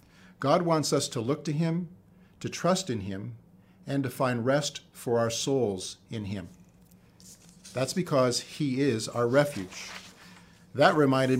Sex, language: male, English